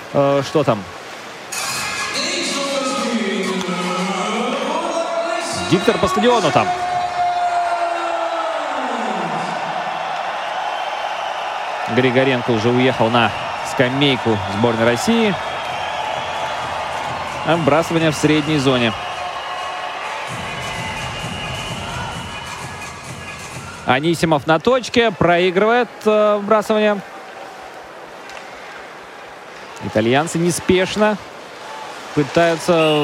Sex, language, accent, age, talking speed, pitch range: male, Russian, native, 30-49, 45 wpm, 150-245 Hz